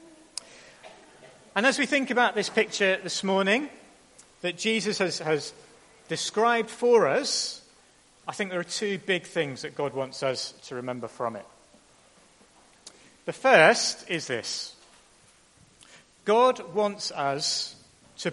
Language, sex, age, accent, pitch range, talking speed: English, male, 40-59, British, 175-240 Hz, 130 wpm